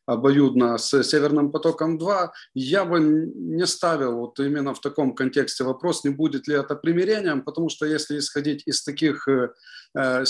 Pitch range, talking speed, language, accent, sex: 135-175 Hz, 150 wpm, Ukrainian, native, male